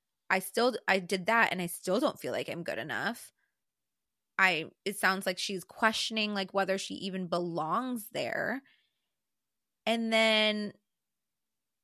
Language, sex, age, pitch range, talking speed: English, female, 20-39, 175-220 Hz, 140 wpm